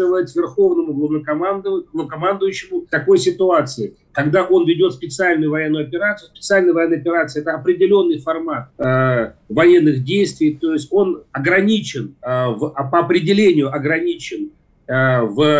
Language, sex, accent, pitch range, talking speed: Russian, male, native, 145-190 Hz, 115 wpm